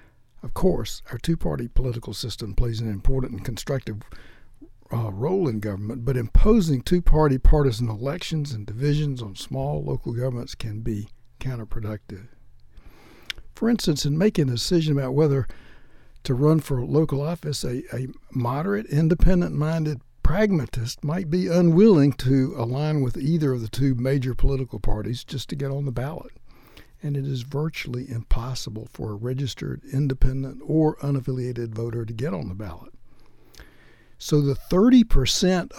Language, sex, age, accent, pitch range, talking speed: English, male, 60-79, American, 115-145 Hz, 145 wpm